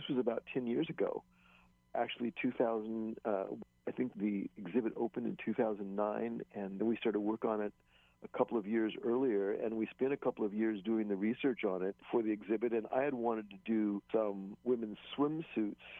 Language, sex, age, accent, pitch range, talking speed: English, male, 50-69, American, 100-115 Hz, 195 wpm